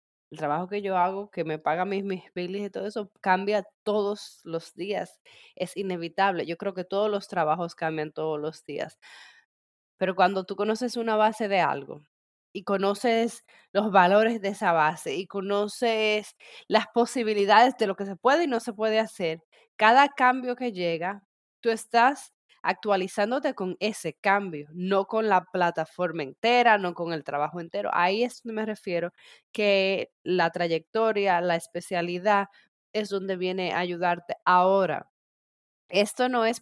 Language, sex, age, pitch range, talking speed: Spanish, female, 20-39, 175-220 Hz, 160 wpm